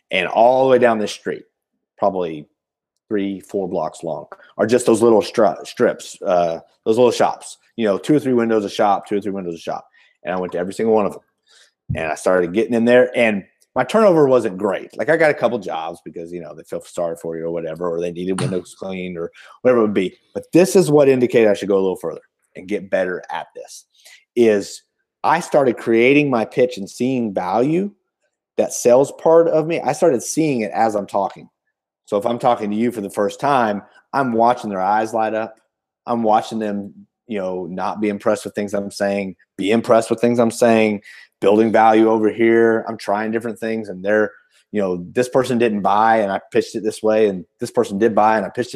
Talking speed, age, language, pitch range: 225 wpm, 30-49, English, 100-120 Hz